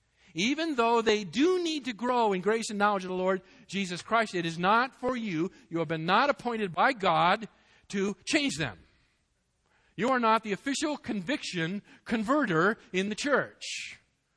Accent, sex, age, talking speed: American, male, 50-69, 170 wpm